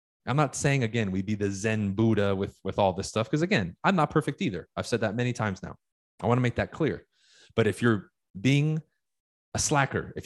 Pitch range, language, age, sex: 105-135 Hz, English, 30-49, male